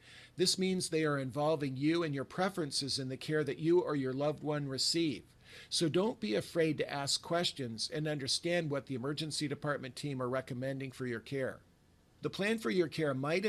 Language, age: English, 50-69